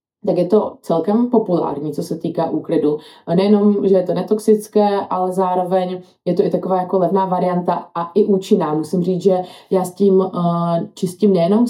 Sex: female